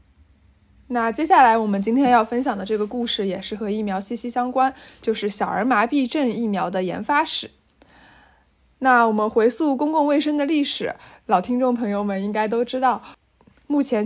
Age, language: 20-39, Chinese